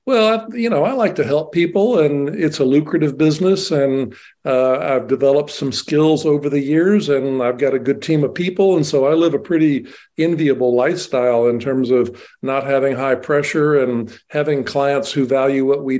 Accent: American